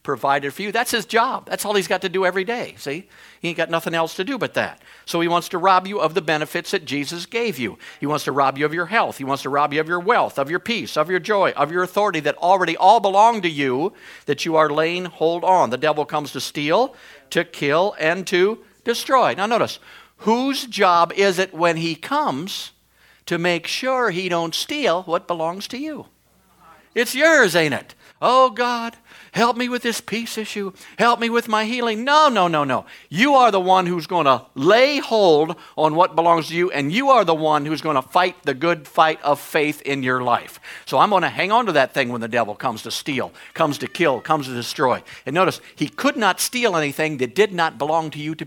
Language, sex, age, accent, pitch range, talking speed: English, male, 60-79, American, 155-215 Hz, 235 wpm